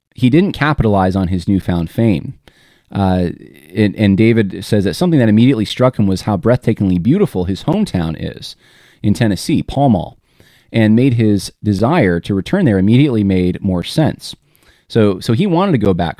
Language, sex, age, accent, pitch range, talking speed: English, male, 30-49, American, 90-115 Hz, 170 wpm